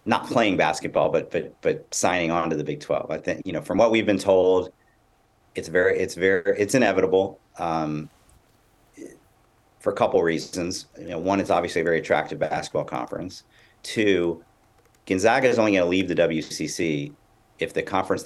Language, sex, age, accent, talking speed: English, male, 40-59, American, 175 wpm